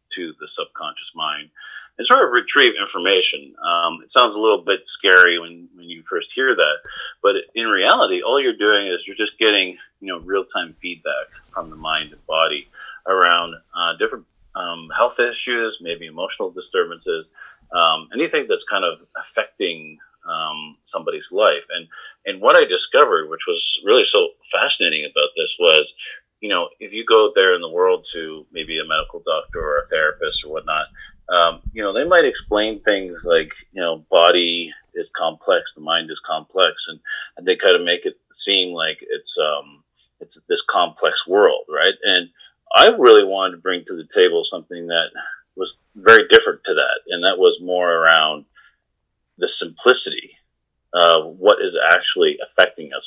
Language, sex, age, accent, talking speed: English, male, 30-49, American, 170 wpm